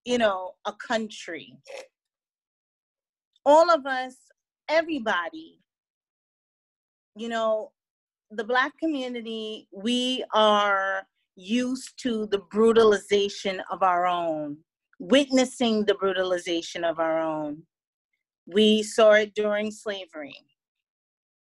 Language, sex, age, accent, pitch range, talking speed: English, female, 30-49, American, 190-250 Hz, 90 wpm